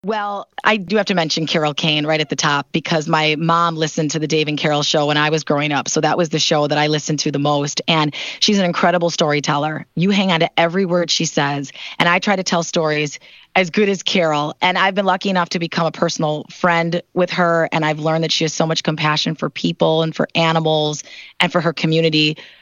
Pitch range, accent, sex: 155-190 Hz, American, female